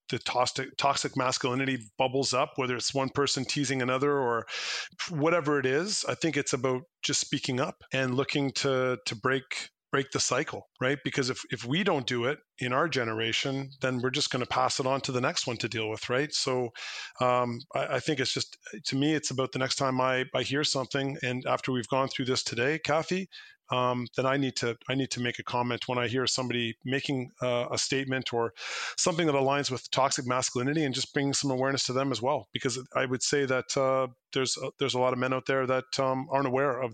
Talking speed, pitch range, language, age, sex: 225 wpm, 125-145 Hz, English, 30-49, male